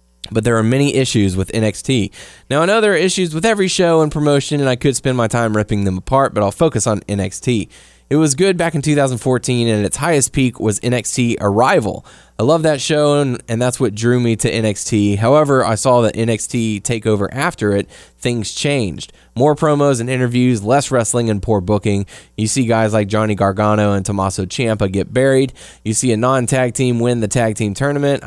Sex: male